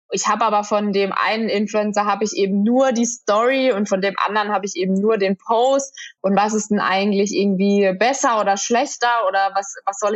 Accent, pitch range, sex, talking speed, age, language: German, 185-215 Hz, female, 215 wpm, 20-39, German